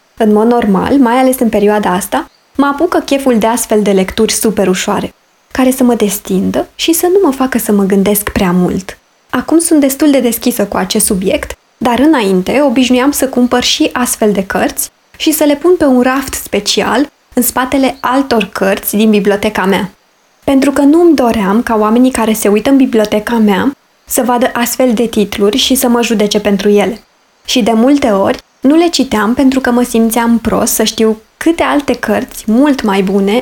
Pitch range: 210-270 Hz